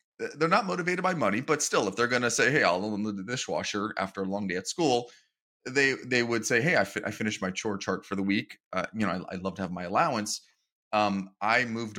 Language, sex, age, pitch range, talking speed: English, male, 30-49, 100-120 Hz, 255 wpm